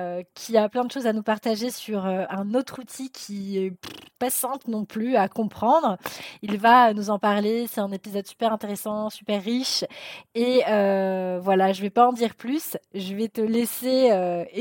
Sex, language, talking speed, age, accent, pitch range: female, French, 190 wpm, 20-39, French, 205-245 Hz